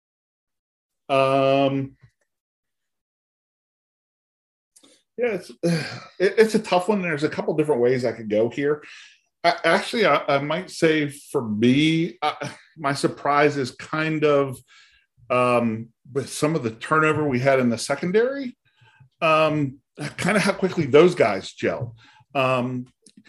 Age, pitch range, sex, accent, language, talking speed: 40-59, 115-155 Hz, male, American, English, 125 wpm